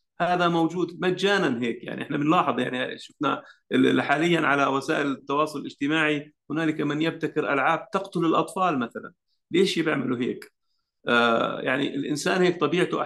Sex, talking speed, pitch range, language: male, 135 wpm, 130-160 Hz, Arabic